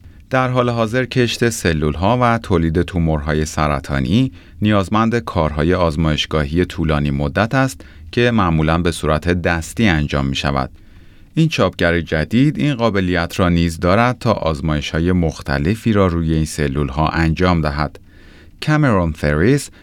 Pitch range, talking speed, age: 80-105 Hz, 135 wpm, 30-49